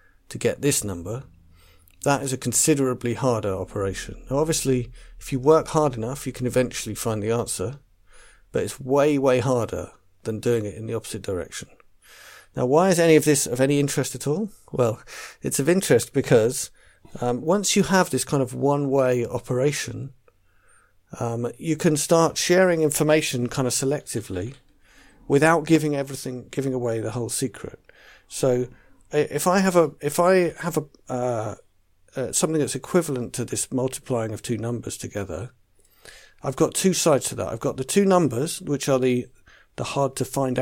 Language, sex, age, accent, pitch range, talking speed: English, male, 50-69, British, 115-145 Hz, 170 wpm